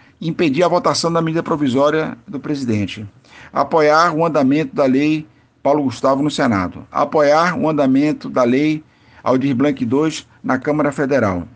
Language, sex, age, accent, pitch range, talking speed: Portuguese, male, 50-69, Brazilian, 130-165 Hz, 145 wpm